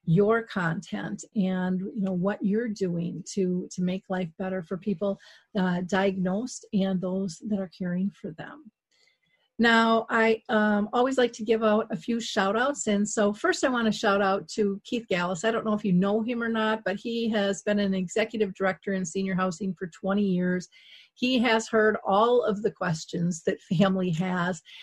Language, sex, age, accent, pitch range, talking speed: English, female, 40-59, American, 190-225 Hz, 190 wpm